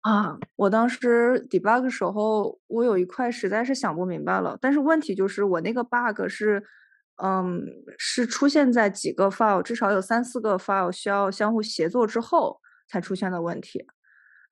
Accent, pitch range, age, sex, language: native, 185-230 Hz, 20-39, female, Chinese